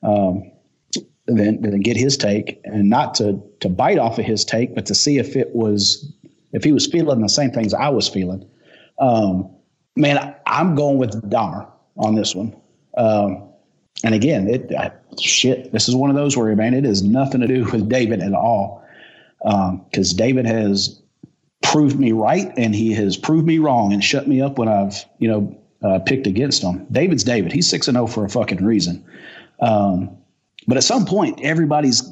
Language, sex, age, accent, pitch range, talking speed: English, male, 40-59, American, 105-140 Hz, 200 wpm